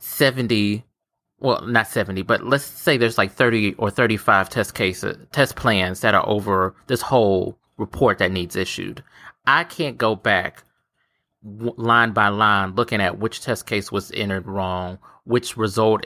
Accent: American